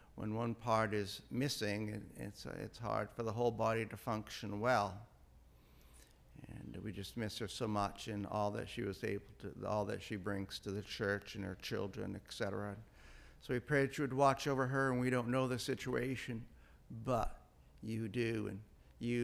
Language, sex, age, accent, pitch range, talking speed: English, male, 60-79, American, 100-120 Hz, 185 wpm